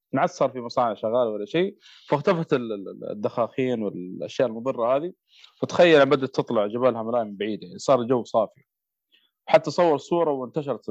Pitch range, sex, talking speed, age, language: 115-150 Hz, male, 150 wpm, 20-39, Arabic